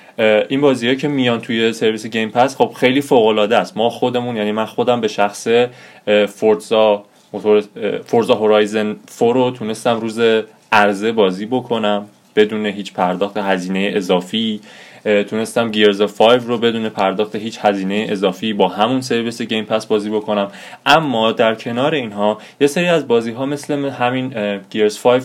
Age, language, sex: 20-39, Persian, male